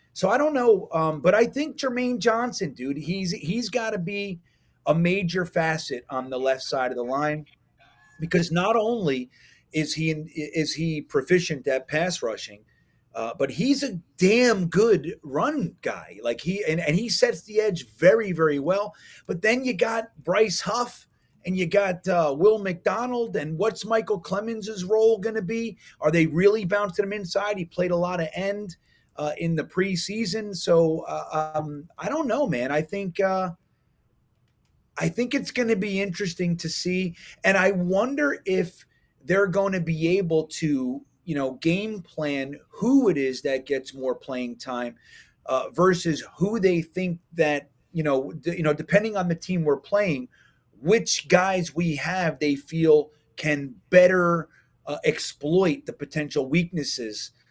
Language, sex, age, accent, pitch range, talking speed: English, male, 30-49, American, 150-205 Hz, 170 wpm